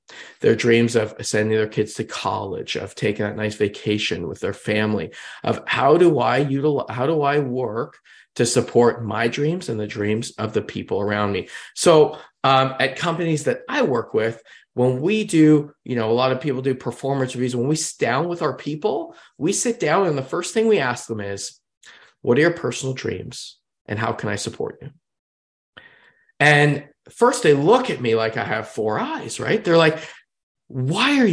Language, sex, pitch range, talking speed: English, male, 115-150 Hz, 195 wpm